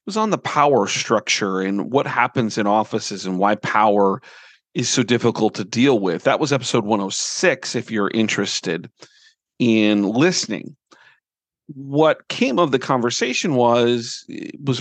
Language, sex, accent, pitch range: English, male, American, 110-150 Hz